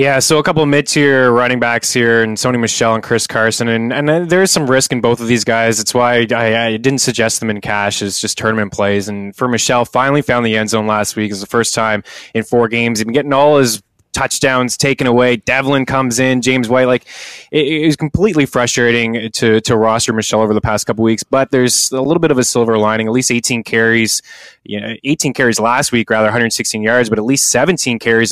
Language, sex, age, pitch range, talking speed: English, male, 20-39, 110-125 Hz, 235 wpm